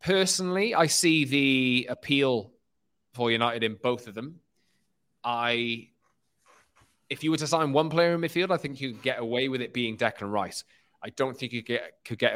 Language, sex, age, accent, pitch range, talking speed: English, male, 20-39, British, 110-135 Hz, 190 wpm